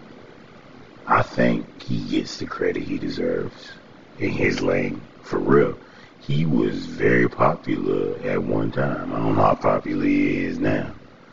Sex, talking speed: male, 145 wpm